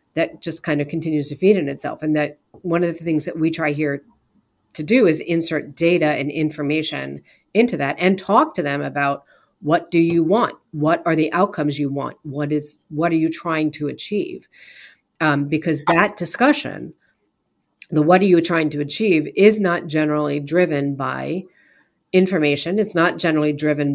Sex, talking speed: female, 180 wpm